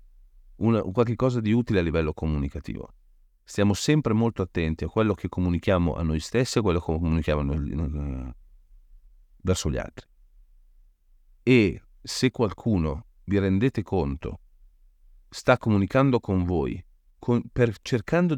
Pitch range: 80-115 Hz